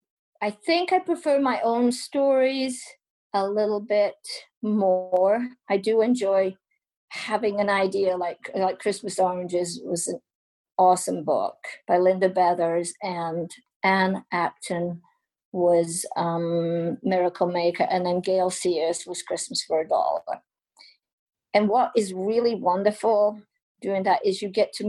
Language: English